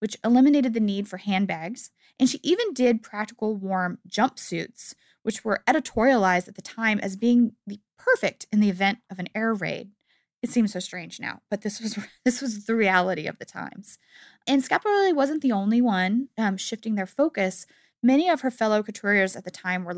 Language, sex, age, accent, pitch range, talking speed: English, female, 20-39, American, 195-245 Hz, 190 wpm